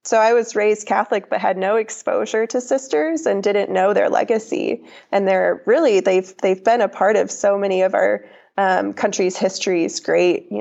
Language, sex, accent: English, female, American